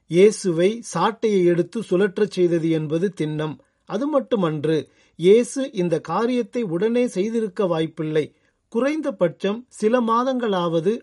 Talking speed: 100 wpm